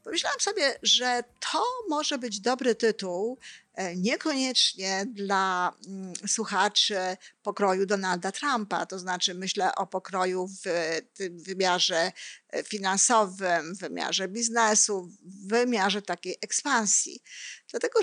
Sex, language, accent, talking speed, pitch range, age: female, Polish, native, 105 wpm, 195-260 Hz, 50-69